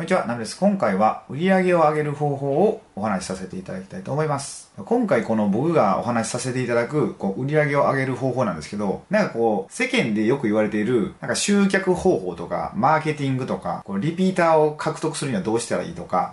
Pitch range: 125-200 Hz